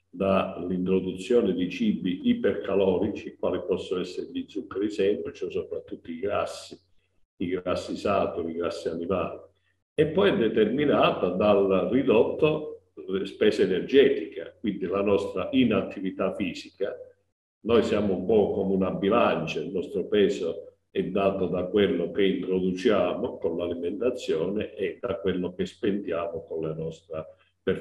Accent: native